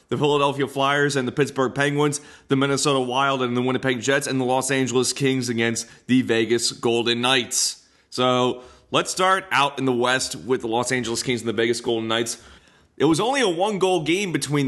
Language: English